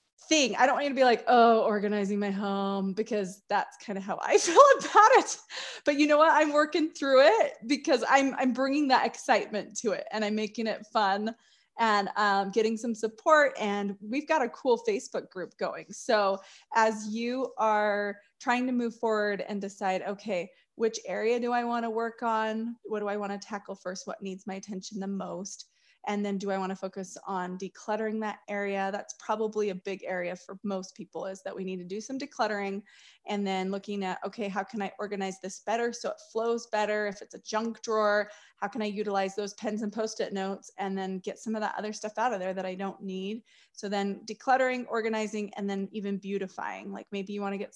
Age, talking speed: 20-39, 215 wpm